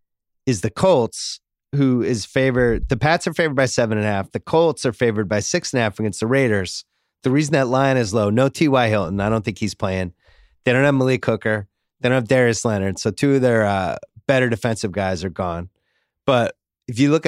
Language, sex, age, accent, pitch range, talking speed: English, male, 30-49, American, 100-130 Hz, 205 wpm